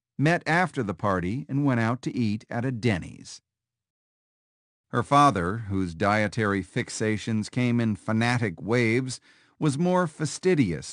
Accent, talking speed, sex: American, 130 wpm, male